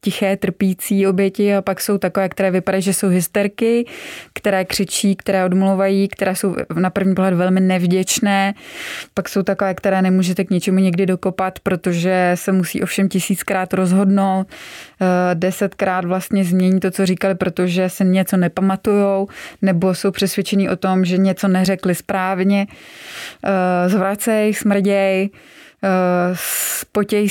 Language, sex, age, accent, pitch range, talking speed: Czech, female, 20-39, native, 185-195 Hz, 130 wpm